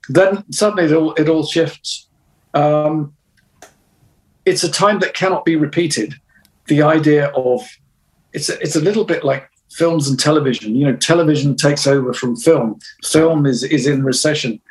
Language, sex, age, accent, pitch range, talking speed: English, male, 50-69, British, 125-155 Hz, 165 wpm